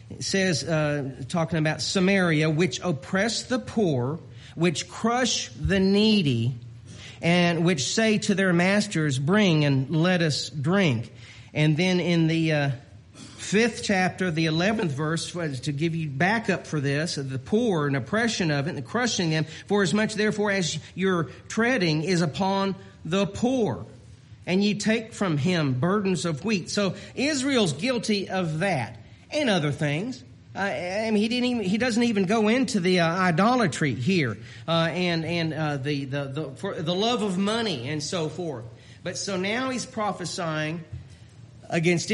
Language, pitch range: English, 150-205 Hz